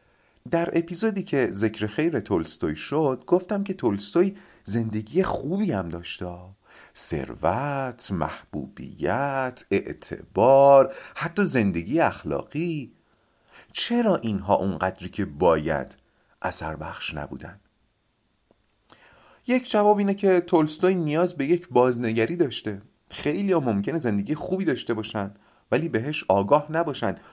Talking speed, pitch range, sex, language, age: 110 wpm, 110-175 Hz, male, Persian, 40-59